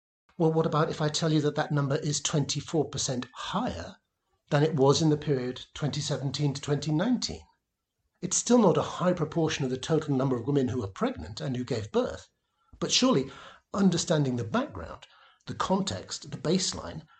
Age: 60-79